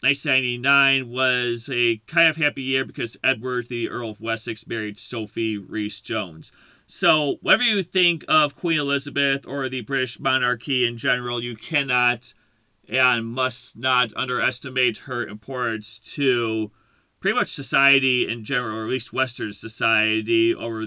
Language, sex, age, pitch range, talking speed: English, male, 30-49, 110-135 Hz, 140 wpm